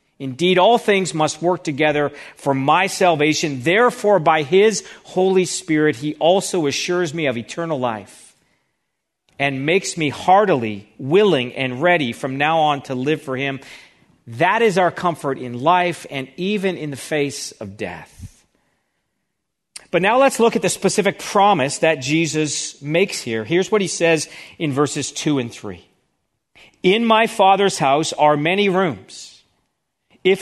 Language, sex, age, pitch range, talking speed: English, male, 40-59, 145-190 Hz, 150 wpm